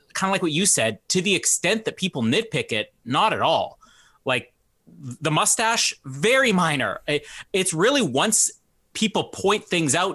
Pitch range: 125-175 Hz